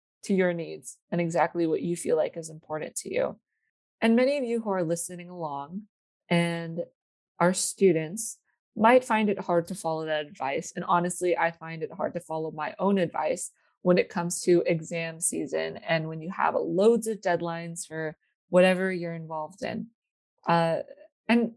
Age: 20-39